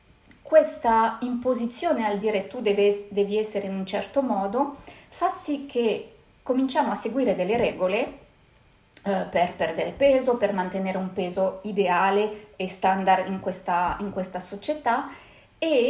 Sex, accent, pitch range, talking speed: female, native, 195-260 Hz, 135 wpm